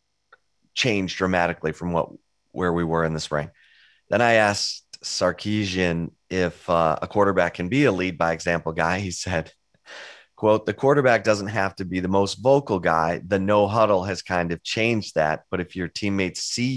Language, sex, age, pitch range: English, male, 30-49, 90-110 Hz